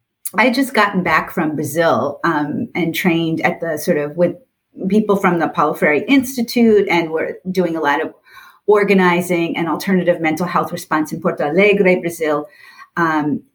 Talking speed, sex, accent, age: 165 wpm, female, American, 40-59